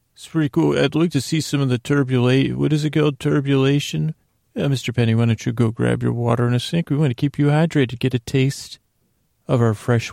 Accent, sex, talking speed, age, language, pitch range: American, male, 230 wpm, 40-59, English, 110-130 Hz